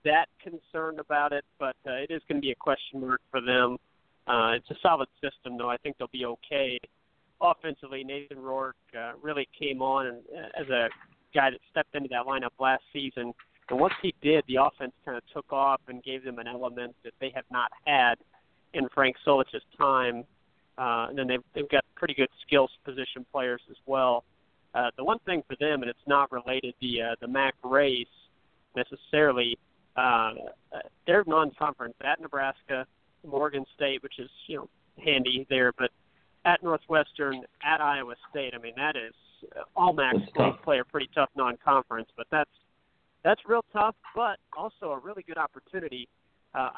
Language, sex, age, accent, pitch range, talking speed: English, male, 50-69, American, 125-150 Hz, 180 wpm